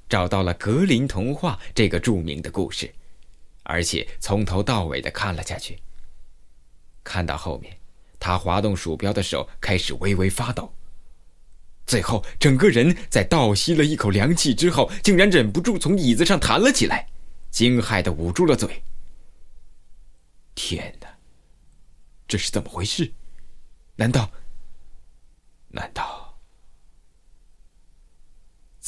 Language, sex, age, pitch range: Chinese, male, 20-39, 85-110 Hz